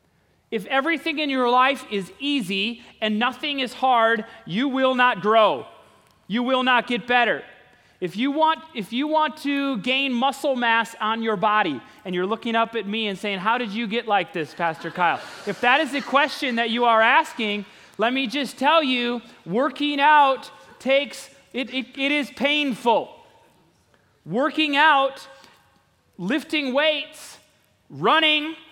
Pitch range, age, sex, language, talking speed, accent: 220-280 Hz, 30-49, male, English, 160 wpm, American